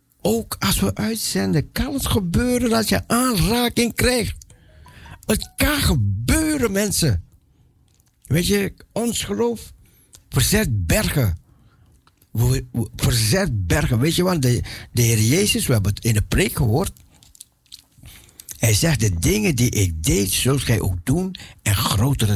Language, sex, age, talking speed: Dutch, male, 60-79, 135 wpm